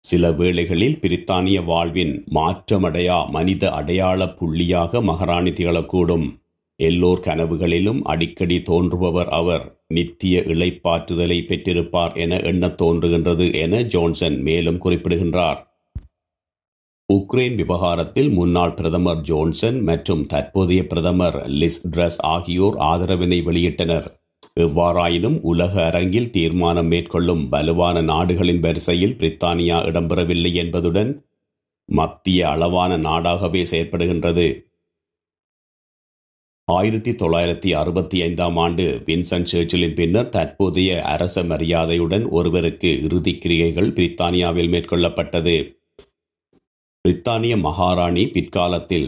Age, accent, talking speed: 50-69, native, 85 wpm